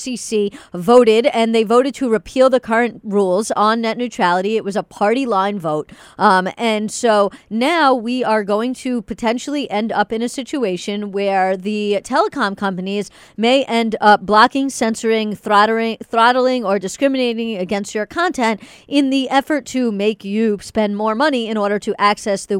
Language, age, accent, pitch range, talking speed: English, 40-59, American, 200-245 Hz, 165 wpm